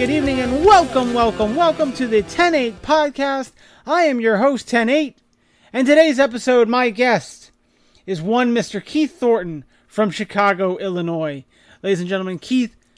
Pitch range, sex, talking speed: 165-230 Hz, male, 150 wpm